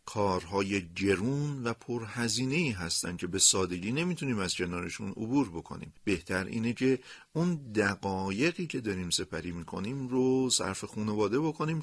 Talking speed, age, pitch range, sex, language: 130 wpm, 40-59, 95-140 Hz, male, Persian